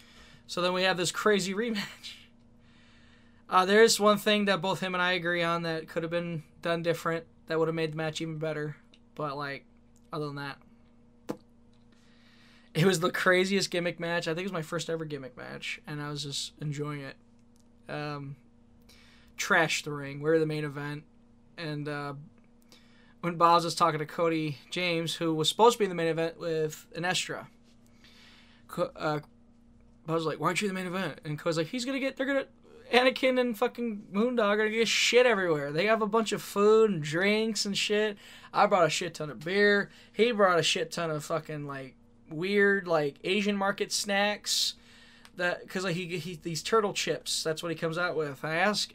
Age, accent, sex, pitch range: 20-39, American, male, 145-190 Hz